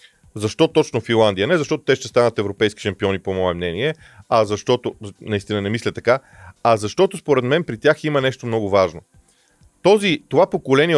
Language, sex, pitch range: Bulgarian, male, 110-150 Hz